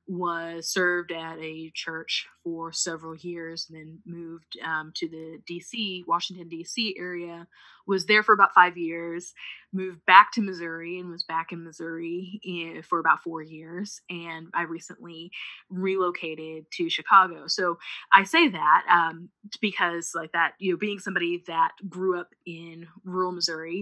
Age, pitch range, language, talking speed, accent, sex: 20-39, 165-180 Hz, English, 155 wpm, American, female